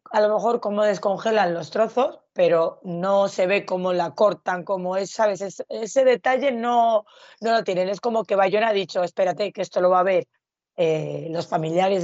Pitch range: 170-210 Hz